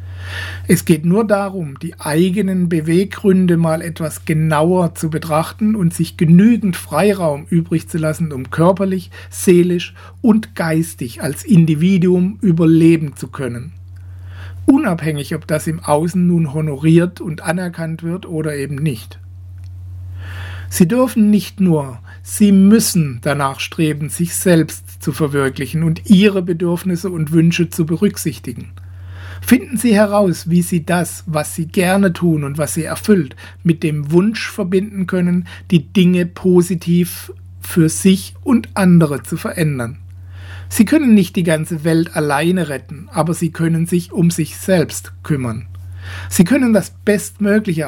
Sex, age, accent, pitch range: male, 60-79, German, 135-180 Hz